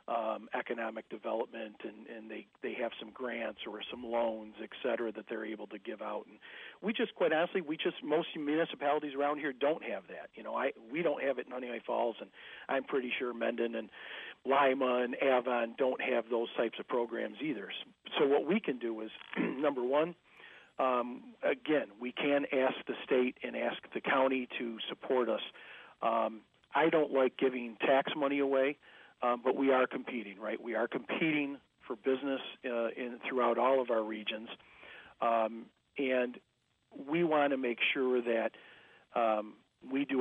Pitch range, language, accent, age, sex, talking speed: 115-140 Hz, English, American, 40-59, male, 180 wpm